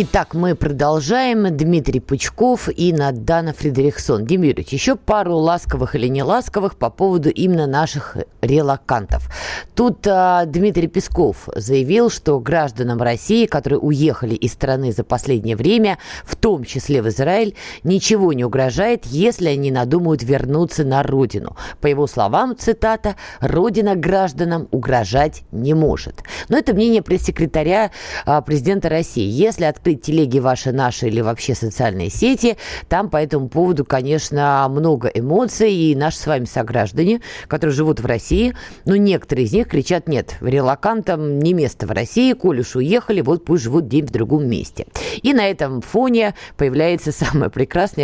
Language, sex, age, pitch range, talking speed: Russian, female, 20-39, 135-190 Hz, 150 wpm